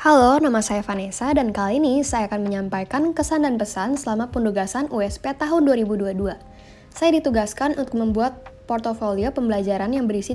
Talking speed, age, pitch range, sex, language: 150 wpm, 10-29, 205-265 Hz, female, Indonesian